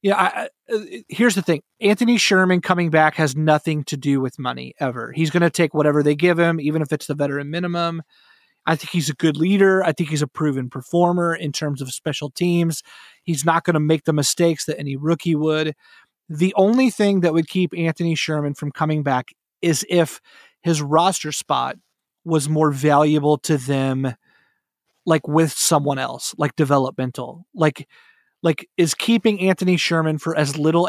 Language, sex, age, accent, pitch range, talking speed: English, male, 30-49, American, 145-170 Hz, 185 wpm